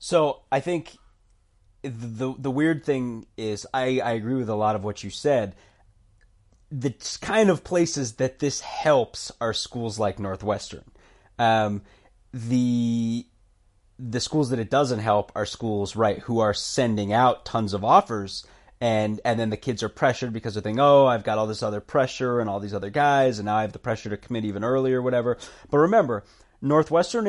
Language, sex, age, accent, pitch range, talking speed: English, male, 30-49, American, 105-135 Hz, 180 wpm